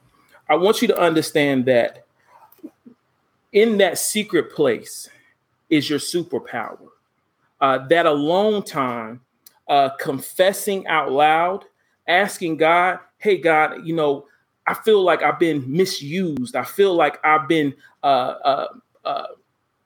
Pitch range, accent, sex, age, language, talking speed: 150-215 Hz, American, male, 40-59, English, 120 wpm